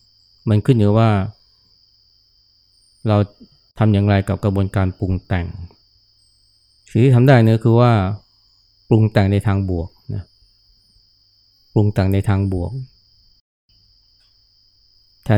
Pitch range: 100-110 Hz